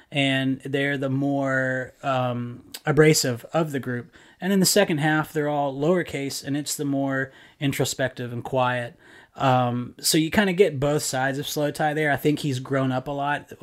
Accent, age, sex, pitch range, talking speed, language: American, 30-49, male, 125-145 Hz, 190 wpm, English